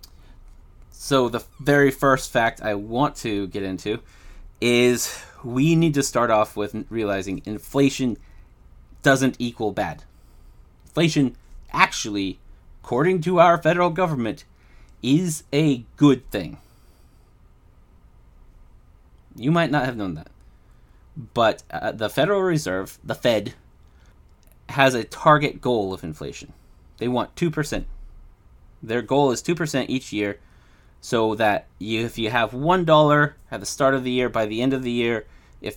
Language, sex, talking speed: English, male, 140 wpm